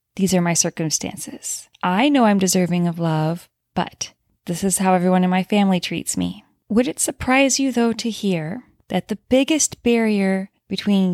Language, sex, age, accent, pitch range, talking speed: English, female, 20-39, American, 185-225 Hz, 170 wpm